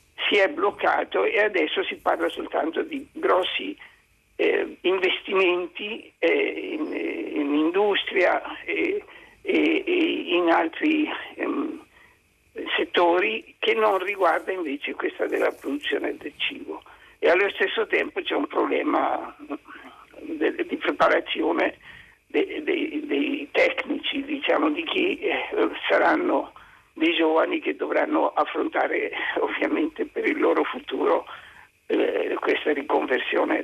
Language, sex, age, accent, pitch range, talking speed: Italian, male, 60-79, native, 330-425 Hz, 120 wpm